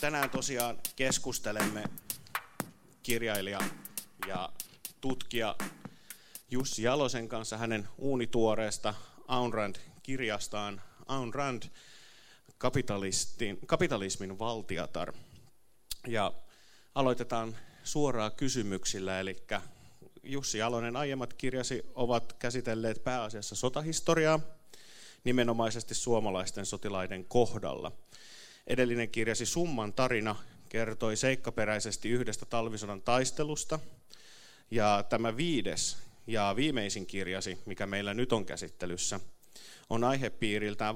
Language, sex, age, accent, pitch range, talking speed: Finnish, male, 30-49, native, 105-125 Hz, 80 wpm